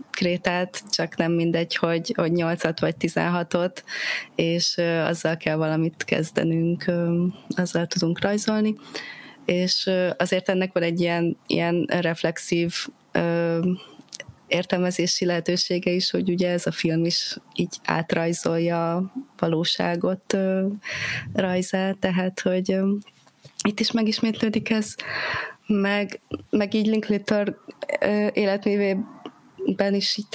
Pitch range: 170-195 Hz